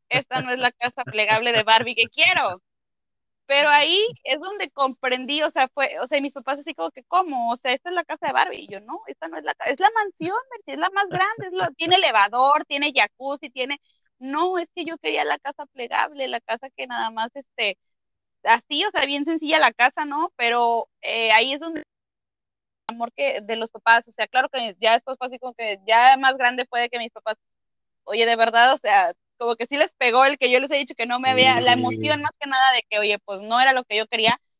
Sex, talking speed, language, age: female, 240 wpm, Spanish, 20-39